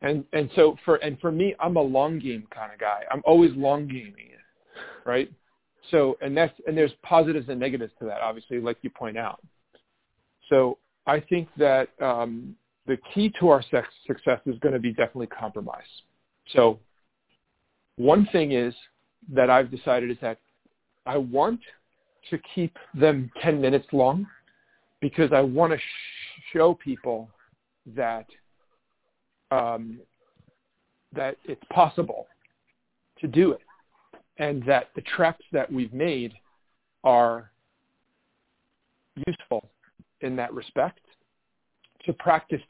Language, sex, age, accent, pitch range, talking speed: English, male, 50-69, American, 125-160 Hz, 135 wpm